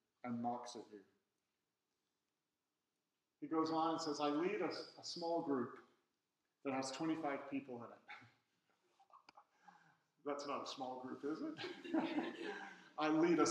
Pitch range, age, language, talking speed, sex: 135-170 Hz, 50-69, English, 140 wpm, male